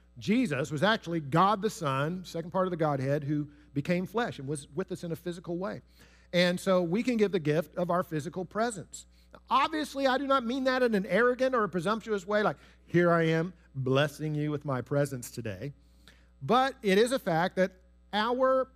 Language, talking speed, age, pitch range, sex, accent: English, 200 wpm, 50-69, 150-215 Hz, male, American